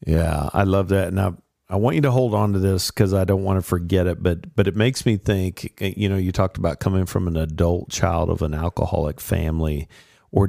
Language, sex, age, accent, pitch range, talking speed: English, male, 50-69, American, 85-105 Hz, 235 wpm